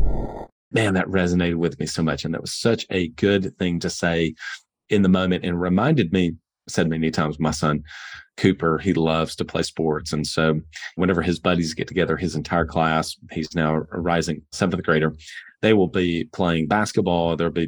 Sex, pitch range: male, 80-90 Hz